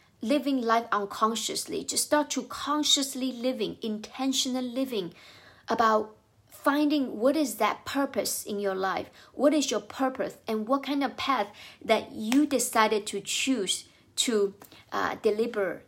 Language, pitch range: English, 200-255 Hz